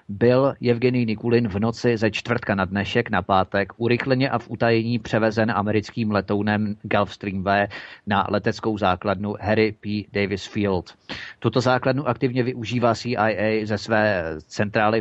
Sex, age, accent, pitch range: male, 30-49, native, 105-125 Hz